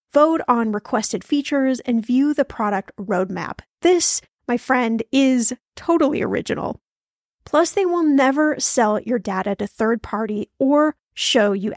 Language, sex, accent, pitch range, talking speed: English, female, American, 215-275 Hz, 140 wpm